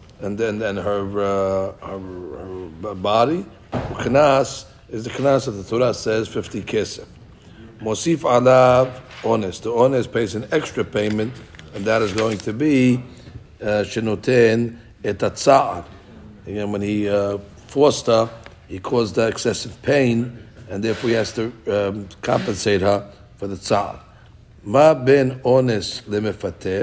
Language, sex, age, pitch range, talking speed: English, male, 60-79, 105-125 Hz, 135 wpm